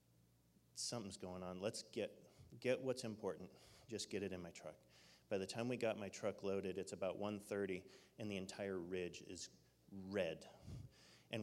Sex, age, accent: male, 30-49, American